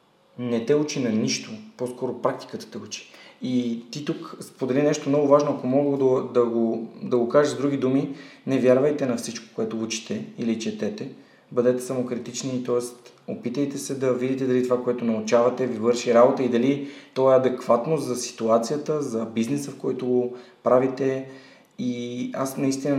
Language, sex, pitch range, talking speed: Bulgarian, male, 120-135 Hz, 170 wpm